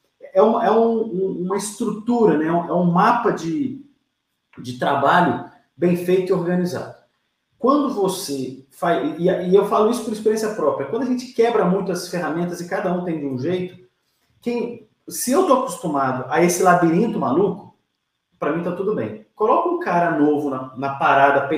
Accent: Brazilian